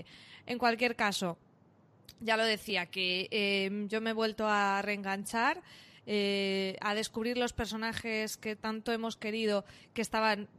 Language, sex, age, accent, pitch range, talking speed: Spanish, female, 20-39, Spanish, 205-255 Hz, 140 wpm